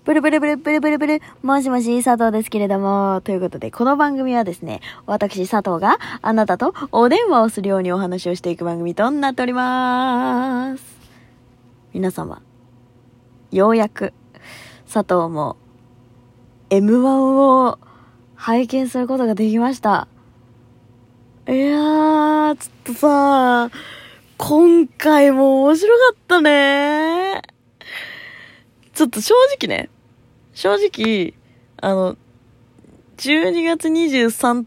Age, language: 20-39, Japanese